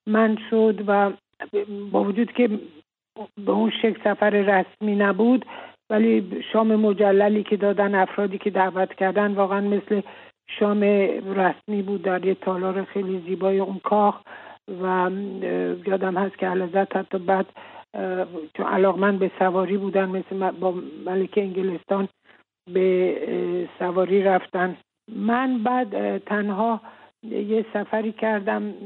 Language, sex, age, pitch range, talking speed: English, male, 60-79, 190-210 Hz, 110 wpm